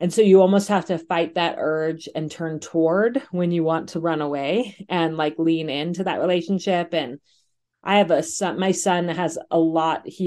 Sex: female